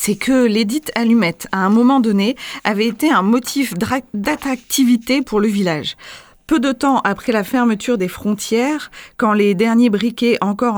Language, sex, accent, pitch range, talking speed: French, female, French, 180-235 Hz, 160 wpm